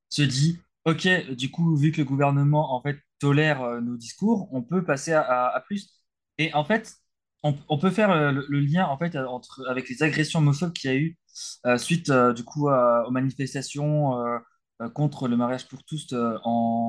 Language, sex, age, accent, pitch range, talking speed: French, male, 20-39, French, 125-160 Hz, 215 wpm